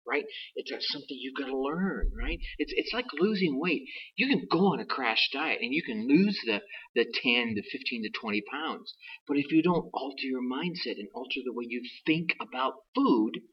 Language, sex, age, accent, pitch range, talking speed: English, male, 40-59, American, 125-180 Hz, 215 wpm